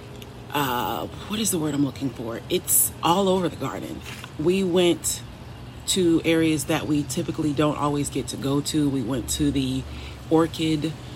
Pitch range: 125-155 Hz